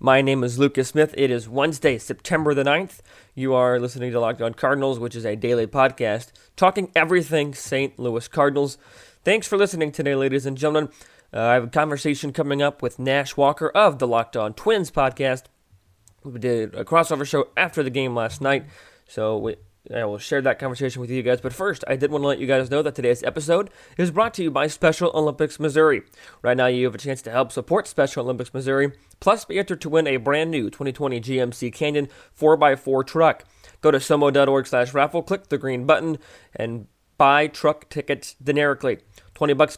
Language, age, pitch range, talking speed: English, 20-39, 125-155 Hz, 200 wpm